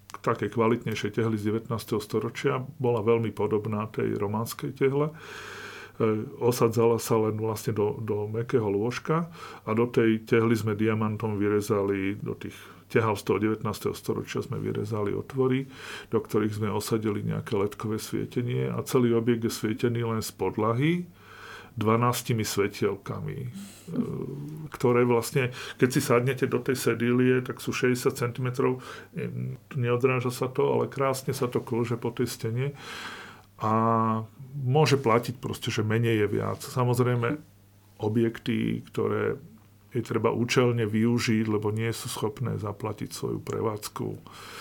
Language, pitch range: Slovak, 110-125 Hz